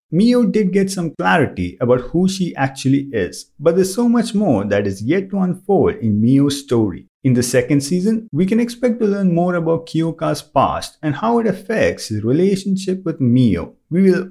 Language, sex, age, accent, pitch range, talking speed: English, male, 50-69, Indian, 135-205 Hz, 195 wpm